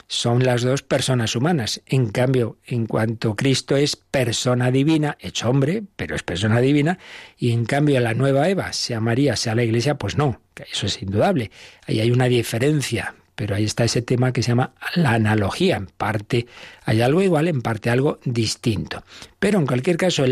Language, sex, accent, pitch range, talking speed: Spanish, male, Spanish, 115-150 Hz, 185 wpm